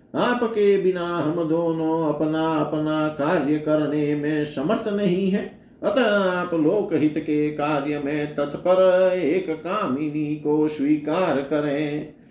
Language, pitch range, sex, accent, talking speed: Hindi, 150-185 Hz, male, native, 120 wpm